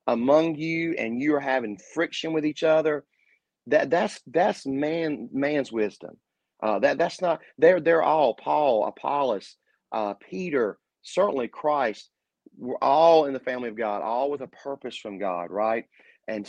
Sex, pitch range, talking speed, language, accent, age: male, 110-140 Hz, 160 wpm, English, American, 30-49